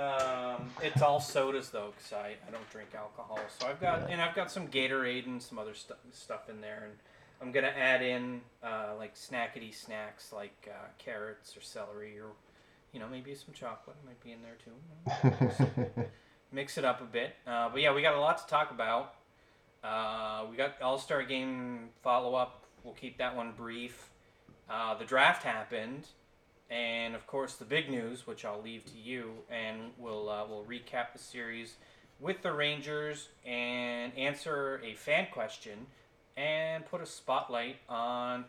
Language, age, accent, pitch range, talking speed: English, 20-39, American, 110-135 Hz, 175 wpm